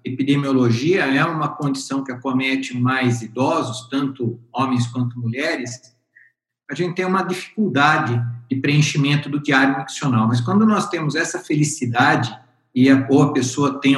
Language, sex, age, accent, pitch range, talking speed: Portuguese, male, 50-69, Brazilian, 125-160 Hz, 140 wpm